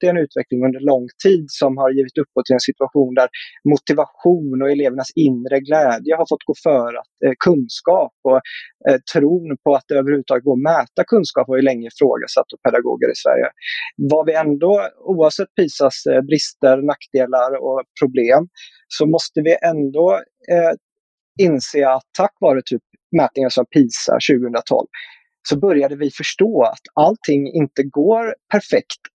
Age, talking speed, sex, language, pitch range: 30-49, 160 wpm, male, Swedish, 135-175 Hz